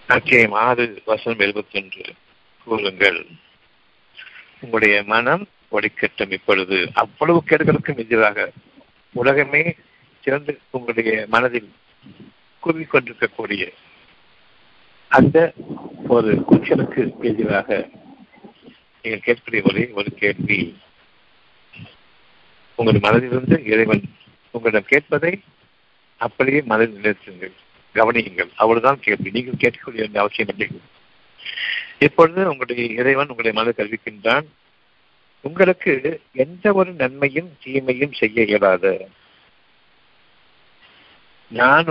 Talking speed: 80 wpm